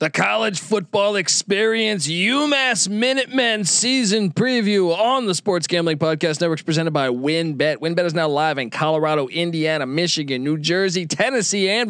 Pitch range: 155-195 Hz